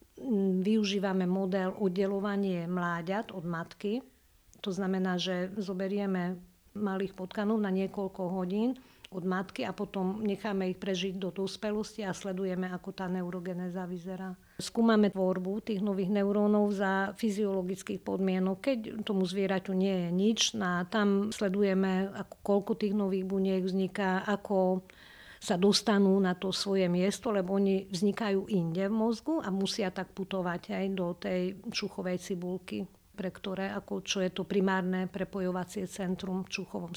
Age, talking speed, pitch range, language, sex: 50-69, 140 wpm, 185-205 Hz, Slovak, female